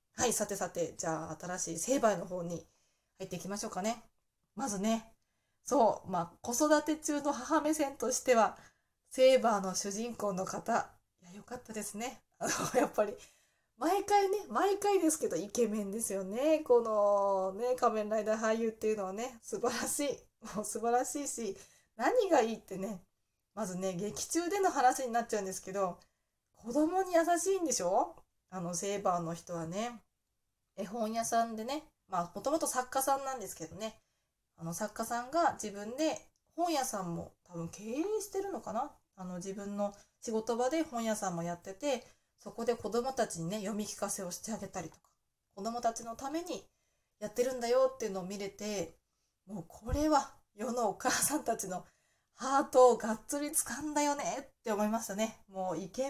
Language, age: Japanese, 20-39